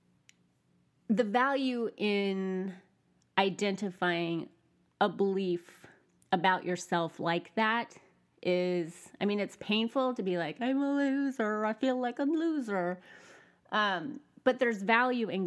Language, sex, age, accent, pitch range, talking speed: English, female, 30-49, American, 175-240 Hz, 120 wpm